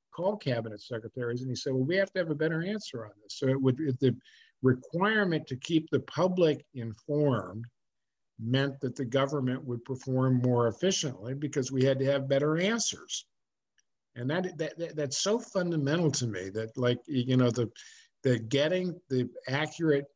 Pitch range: 120-145 Hz